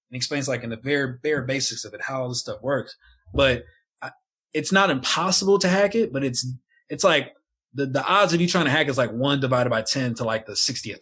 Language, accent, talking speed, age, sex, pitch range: English, American, 245 wpm, 20-39, male, 120-155 Hz